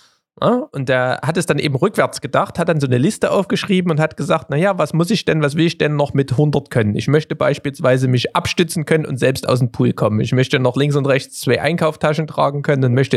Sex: male